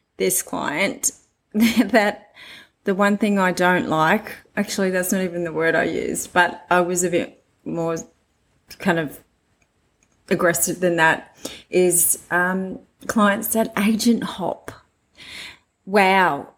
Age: 30-49